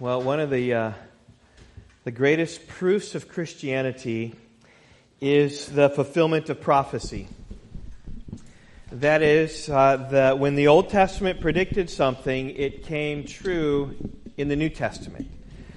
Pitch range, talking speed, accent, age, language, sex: 125-155 Hz, 120 wpm, American, 40-59, English, male